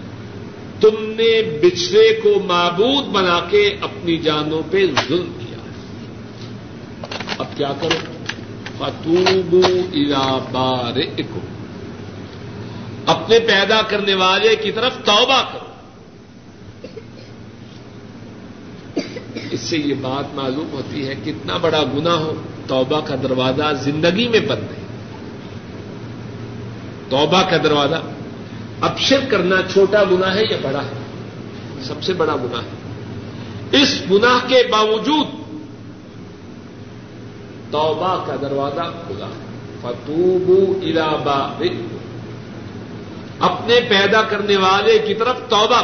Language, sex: Urdu, male